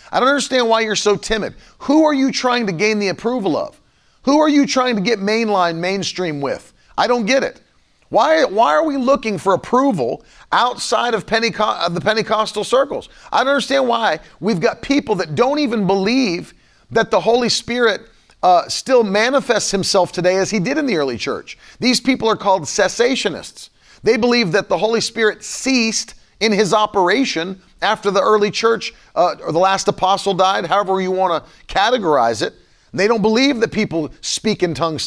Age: 40-59